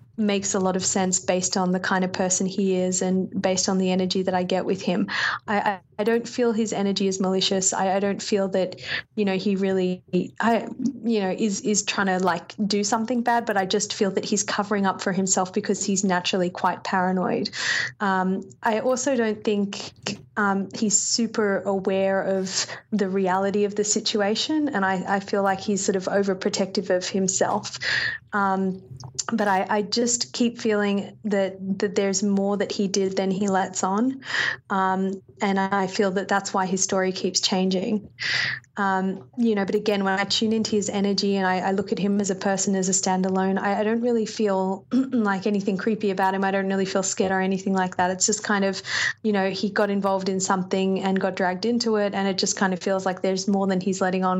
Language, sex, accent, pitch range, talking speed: English, female, Australian, 190-210 Hz, 210 wpm